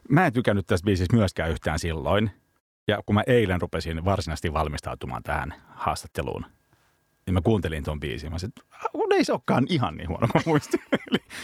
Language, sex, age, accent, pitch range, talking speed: Finnish, male, 30-49, native, 85-115 Hz, 175 wpm